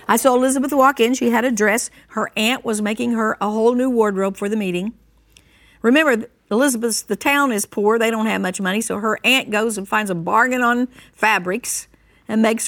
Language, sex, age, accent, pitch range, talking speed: English, female, 50-69, American, 195-260 Hz, 210 wpm